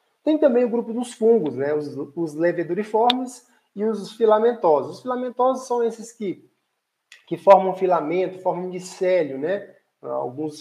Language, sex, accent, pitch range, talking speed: Portuguese, male, Brazilian, 145-200 Hz, 140 wpm